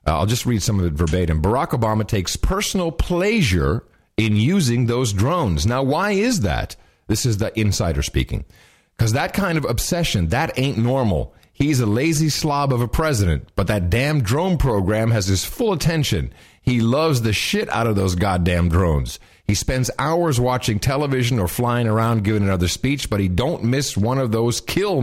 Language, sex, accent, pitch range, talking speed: English, male, American, 95-125 Hz, 185 wpm